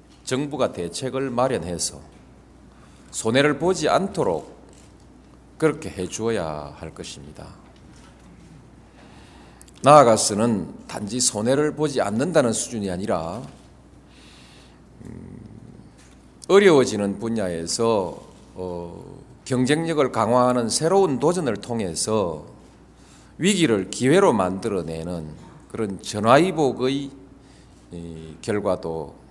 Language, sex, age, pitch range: Korean, male, 40-59, 80-120 Hz